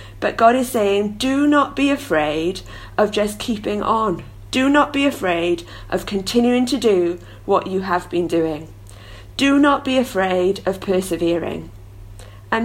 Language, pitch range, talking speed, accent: English, 155-220 Hz, 150 wpm, British